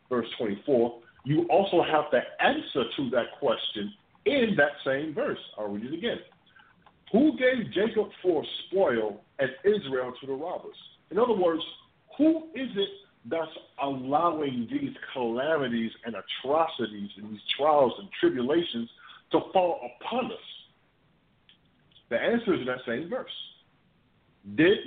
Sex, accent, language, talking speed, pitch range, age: male, American, English, 140 wpm, 130-200 Hz, 50-69